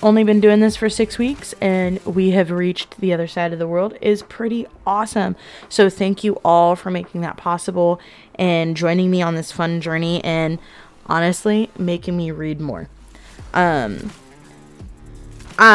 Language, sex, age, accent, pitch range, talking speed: English, female, 20-39, American, 180-220 Hz, 160 wpm